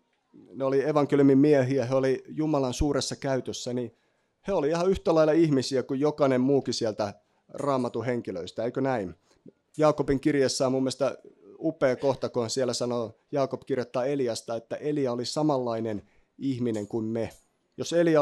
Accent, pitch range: native, 120-150 Hz